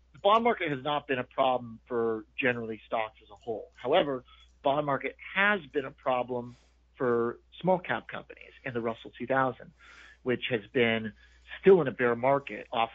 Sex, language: male, English